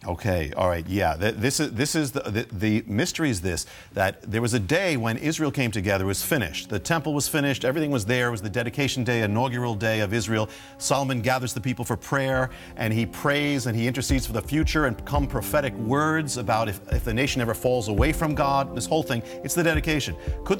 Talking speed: 220 wpm